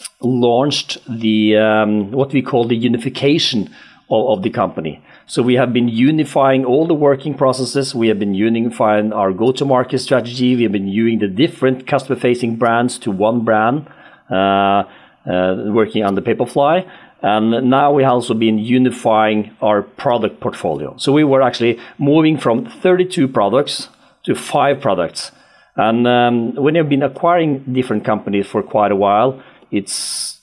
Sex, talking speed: male, 160 wpm